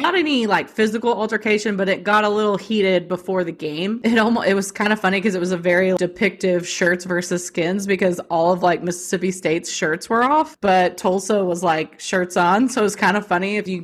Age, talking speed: 30-49, 230 wpm